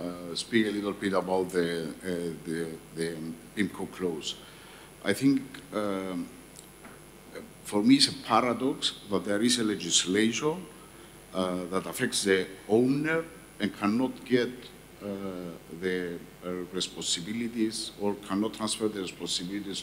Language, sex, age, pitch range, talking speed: English, male, 50-69, 90-110 Hz, 125 wpm